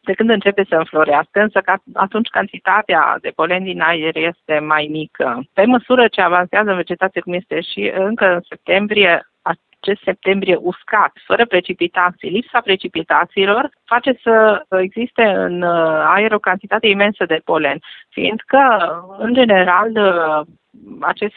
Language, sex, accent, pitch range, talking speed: Romanian, female, native, 175-215 Hz, 135 wpm